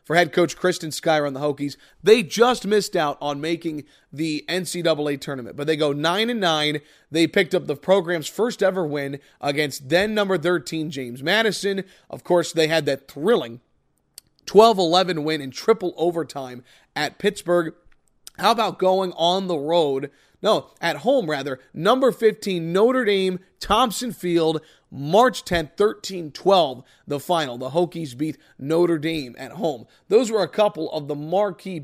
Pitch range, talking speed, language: 150-185 Hz, 155 wpm, English